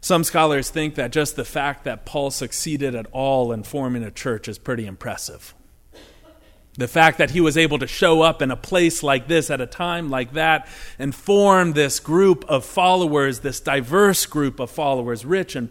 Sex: male